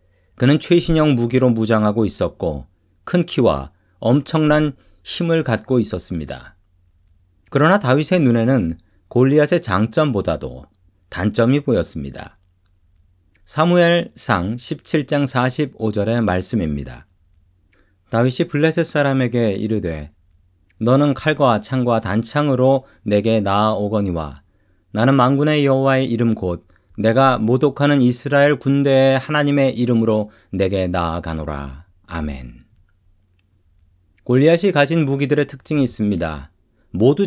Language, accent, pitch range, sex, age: Korean, native, 90-140 Hz, male, 40-59